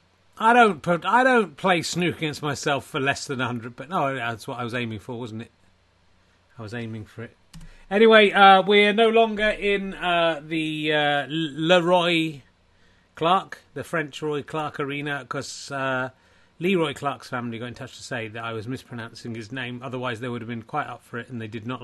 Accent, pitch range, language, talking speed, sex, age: British, 115-160 Hz, English, 205 wpm, male, 30-49